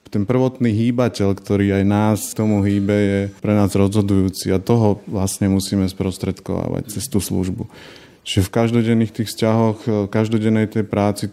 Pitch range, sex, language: 100-110 Hz, male, Slovak